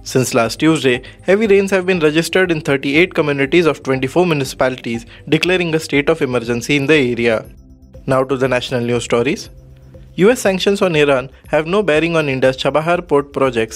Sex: male